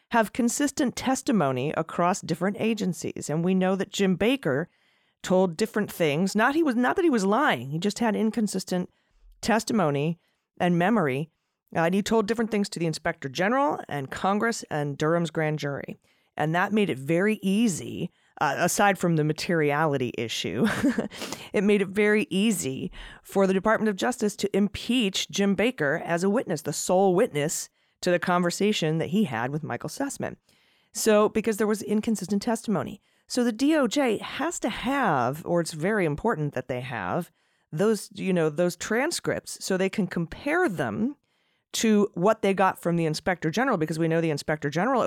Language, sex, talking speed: English, female, 175 wpm